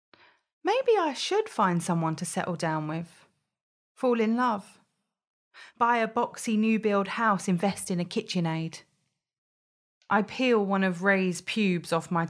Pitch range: 165-215 Hz